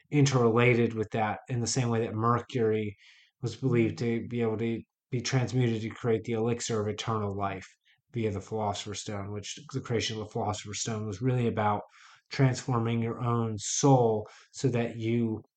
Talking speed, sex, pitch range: 175 wpm, male, 110-130 Hz